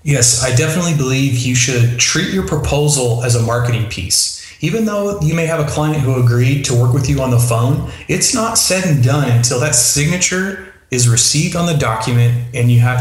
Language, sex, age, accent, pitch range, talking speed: English, male, 30-49, American, 120-145 Hz, 210 wpm